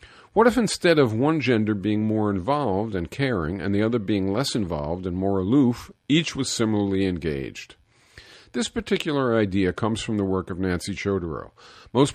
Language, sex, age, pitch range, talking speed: English, male, 50-69, 95-125 Hz, 175 wpm